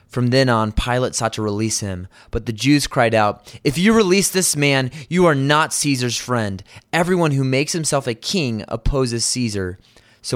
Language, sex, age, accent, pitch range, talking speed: English, male, 20-39, American, 110-145 Hz, 185 wpm